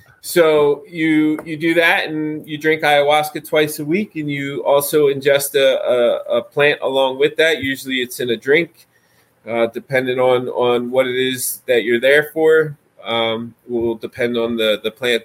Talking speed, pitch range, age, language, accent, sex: 180 wpm, 115-140 Hz, 30-49, English, American, male